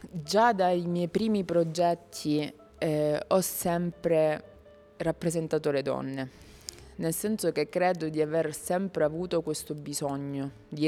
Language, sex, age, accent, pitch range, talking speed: Italian, female, 20-39, native, 140-160 Hz, 120 wpm